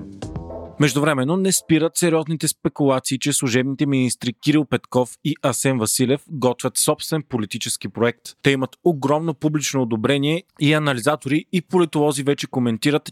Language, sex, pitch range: Bulgarian, male, 125-155 Hz